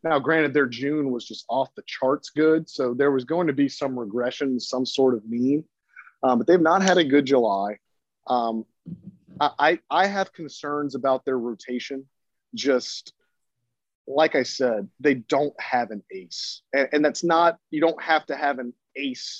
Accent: American